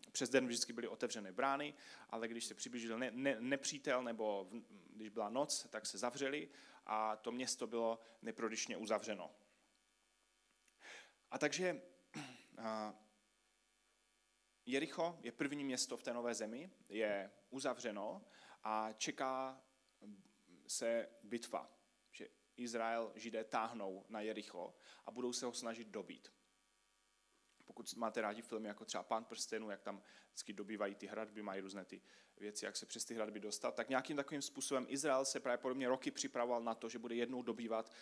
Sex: male